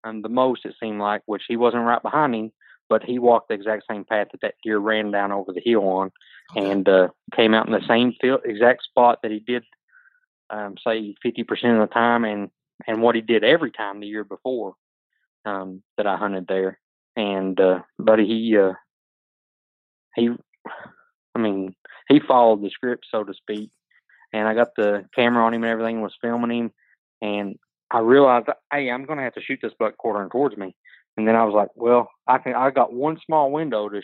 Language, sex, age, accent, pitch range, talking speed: English, male, 20-39, American, 105-125 Hz, 210 wpm